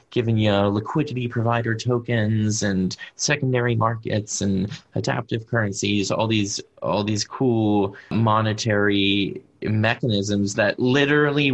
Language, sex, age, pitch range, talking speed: English, male, 20-39, 100-115 Hz, 105 wpm